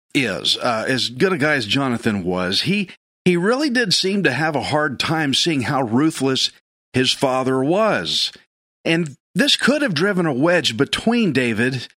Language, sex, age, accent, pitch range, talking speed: English, male, 50-69, American, 130-185 Hz, 170 wpm